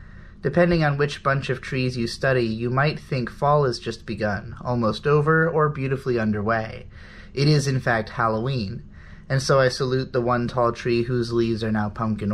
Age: 30-49